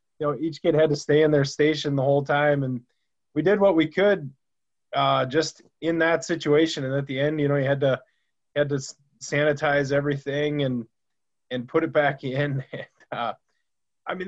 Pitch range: 130-155 Hz